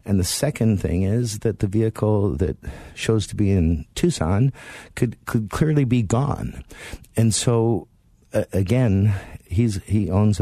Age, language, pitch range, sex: 50-69, English, 90-110 Hz, male